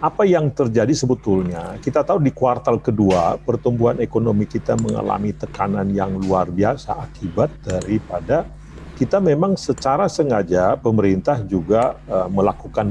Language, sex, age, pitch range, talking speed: Indonesian, male, 40-59, 100-140 Hz, 120 wpm